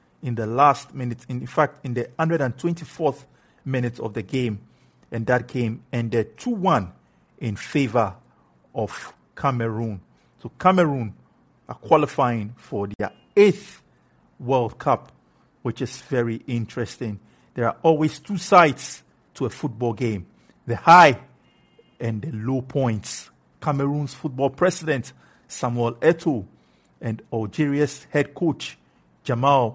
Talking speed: 120 wpm